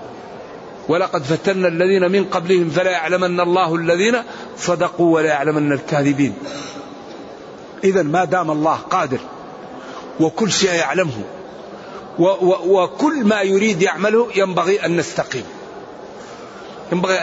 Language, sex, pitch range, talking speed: Arabic, male, 170-210 Hz, 110 wpm